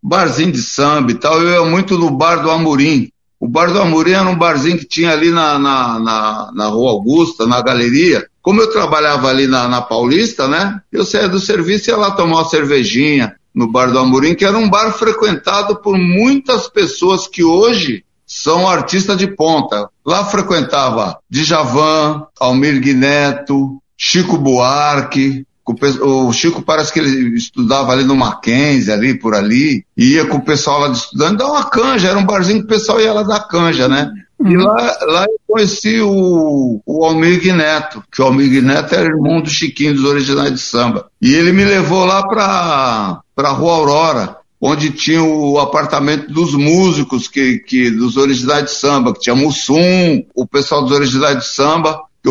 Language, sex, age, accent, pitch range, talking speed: Portuguese, male, 60-79, Brazilian, 135-190 Hz, 180 wpm